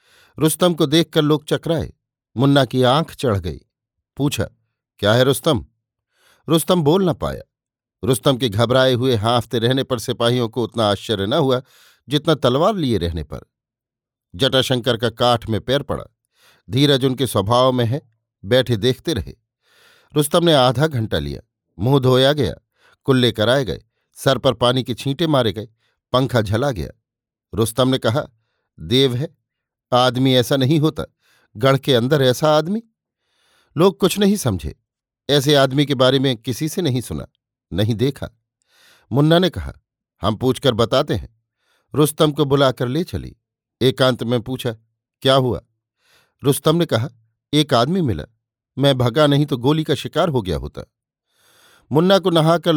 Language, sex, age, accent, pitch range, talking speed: Hindi, male, 50-69, native, 115-145 Hz, 155 wpm